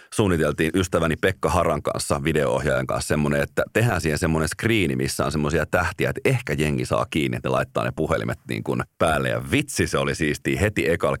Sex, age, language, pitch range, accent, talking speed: male, 30-49, Finnish, 70-90 Hz, native, 195 wpm